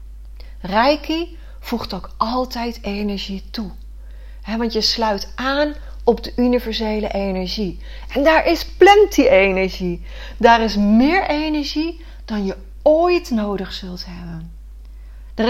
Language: Dutch